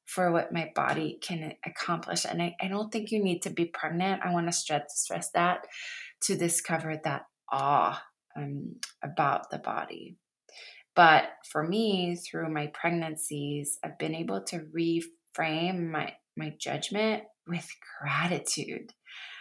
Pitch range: 165-200 Hz